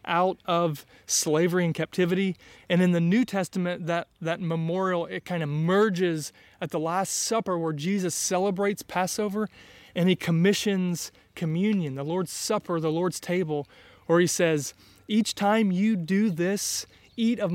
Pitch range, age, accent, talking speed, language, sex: 155-190 Hz, 20-39, American, 155 wpm, English, male